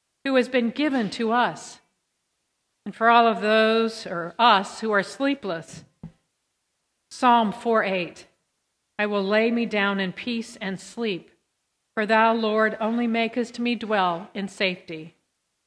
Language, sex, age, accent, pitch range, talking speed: English, female, 50-69, American, 195-235 Hz, 140 wpm